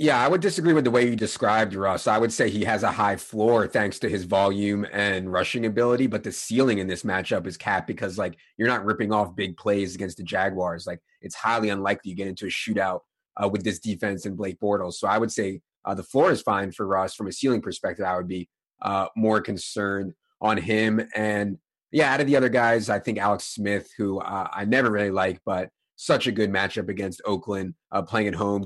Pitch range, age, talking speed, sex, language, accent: 95-110 Hz, 30-49, 230 wpm, male, English, American